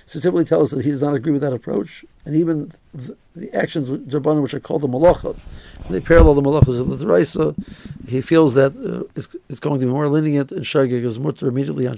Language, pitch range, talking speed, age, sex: English, 135-155 Hz, 230 wpm, 60-79, male